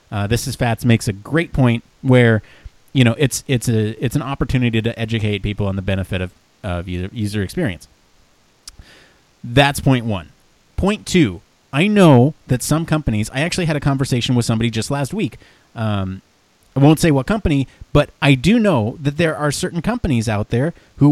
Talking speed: 190 wpm